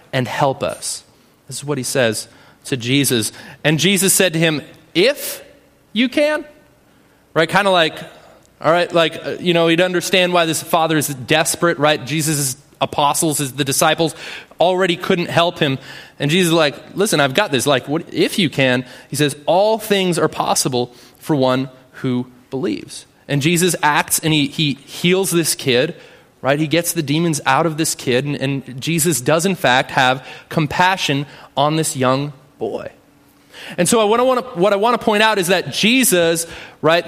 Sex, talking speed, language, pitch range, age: male, 175 wpm, English, 145-180 Hz, 20-39